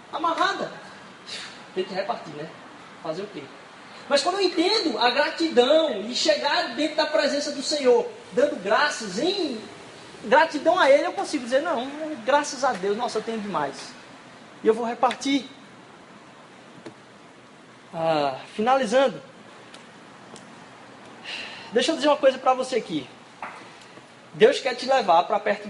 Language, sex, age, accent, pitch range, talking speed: Portuguese, male, 20-39, Brazilian, 215-310 Hz, 135 wpm